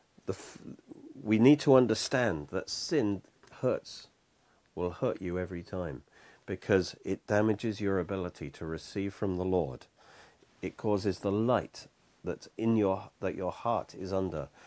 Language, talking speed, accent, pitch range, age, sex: English, 145 wpm, British, 95-115 Hz, 50-69, male